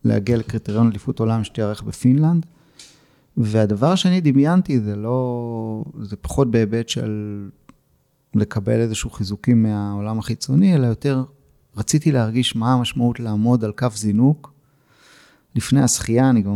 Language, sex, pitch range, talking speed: Hebrew, male, 110-140 Hz, 125 wpm